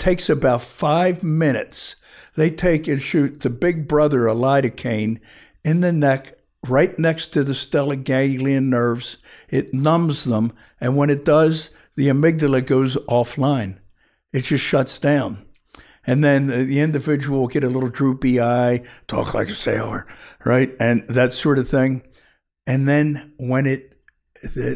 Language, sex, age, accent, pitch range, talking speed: English, male, 60-79, American, 120-145 Hz, 150 wpm